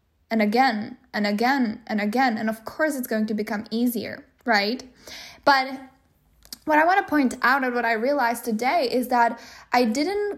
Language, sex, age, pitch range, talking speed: English, female, 10-29, 225-270 Hz, 180 wpm